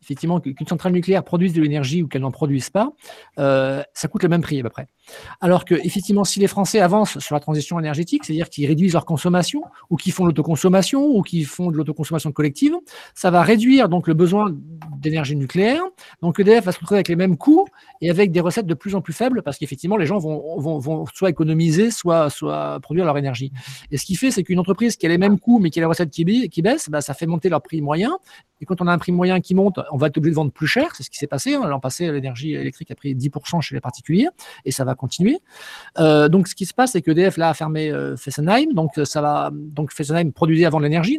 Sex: male